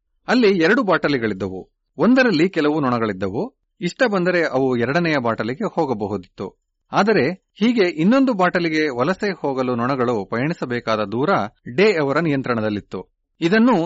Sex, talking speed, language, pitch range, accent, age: male, 110 wpm, Kannada, 115-180 Hz, native, 40-59